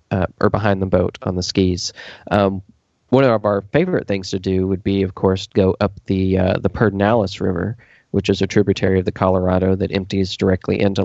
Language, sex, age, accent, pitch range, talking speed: English, male, 30-49, American, 95-105 Hz, 205 wpm